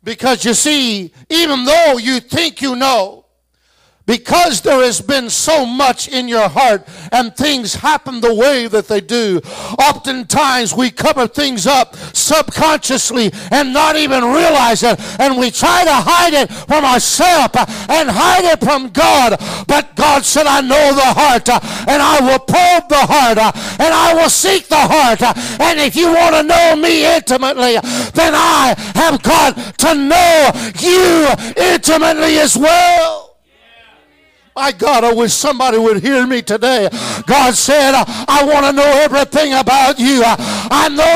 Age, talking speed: 50-69, 155 wpm